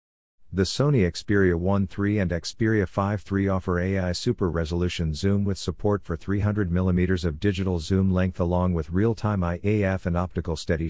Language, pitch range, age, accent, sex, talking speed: English, 85-100 Hz, 50-69, American, male, 155 wpm